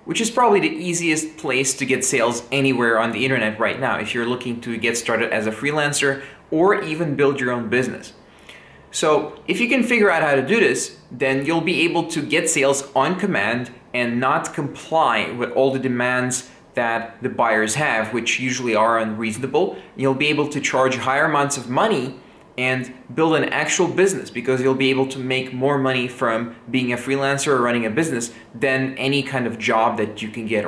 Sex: male